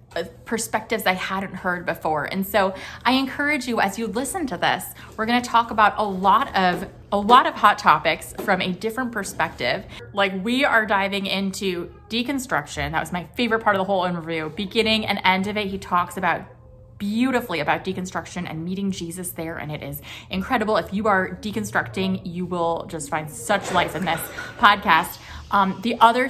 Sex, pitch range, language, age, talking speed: female, 175-230 Hz, English, 20-39, 185 wpm